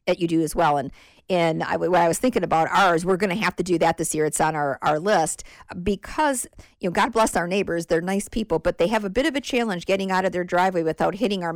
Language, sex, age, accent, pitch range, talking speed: English, female, 50-69, American, 170-210 Hz, 275 wpm